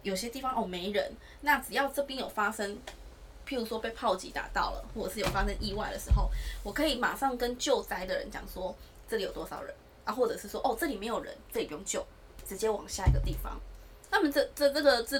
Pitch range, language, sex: 200-255 Hz, Chinese, female